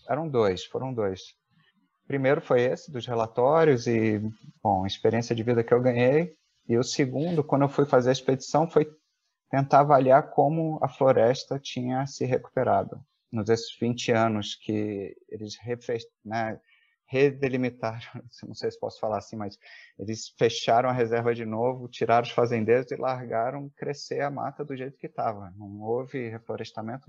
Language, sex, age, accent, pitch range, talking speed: Portuguese, male, 30-49, Brazilian, 105-135 Hz, 155 wpm